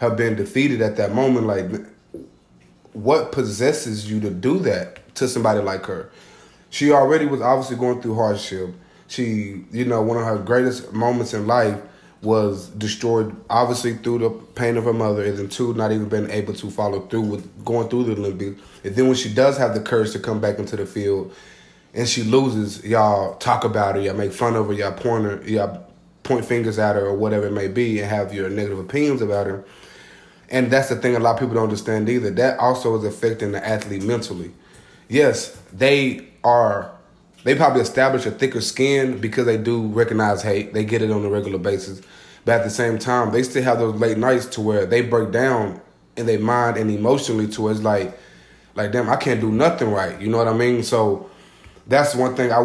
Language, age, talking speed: English, 20-39, 205 wpm